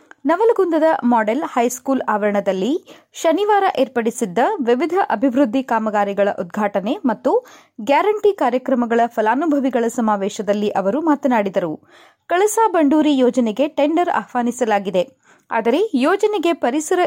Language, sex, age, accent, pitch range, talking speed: Kannada, female, 30-49, native, 235-320 Hz, 90 wpm